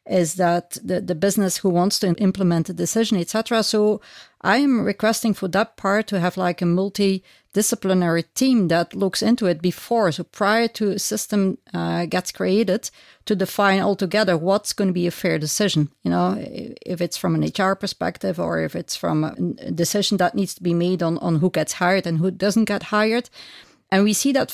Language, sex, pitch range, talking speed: English, female, 180-215 Hz, 200 wpm